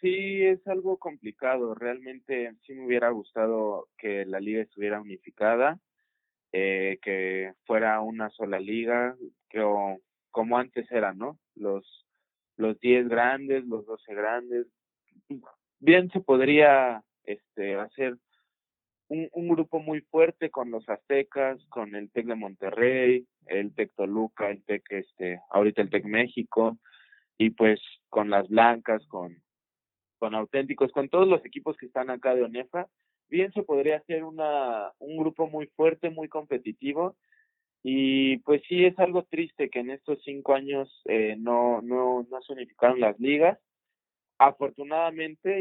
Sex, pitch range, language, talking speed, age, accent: male, 105-145 Hz, Spanish, 140 wpm, 20-39, Mexican